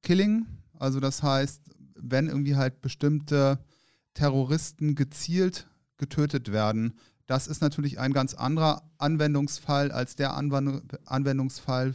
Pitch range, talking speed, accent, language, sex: 130-150 Hz, 110 wpm, German, German, male